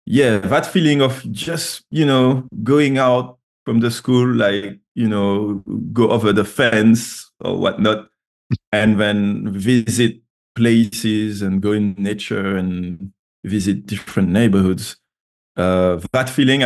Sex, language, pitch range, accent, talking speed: male, English, 100-120 Hz, French, 130 wpm